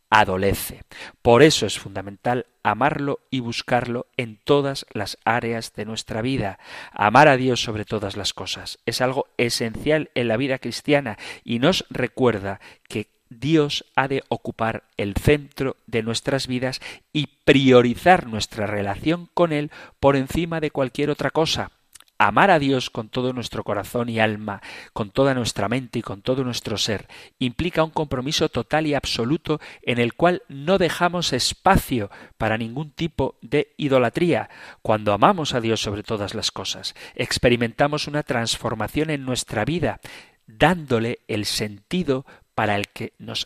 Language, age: Spanish, 40-59